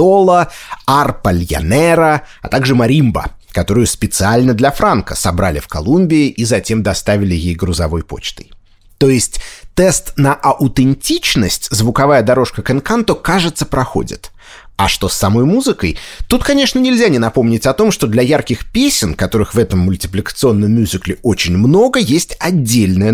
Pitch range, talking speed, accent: 95-150 Hz, 135 wpm, native